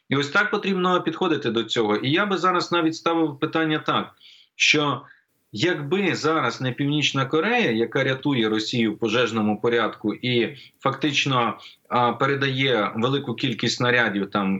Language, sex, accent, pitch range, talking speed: Ukrainian, male, native, 120-160 Hz, 145 wpm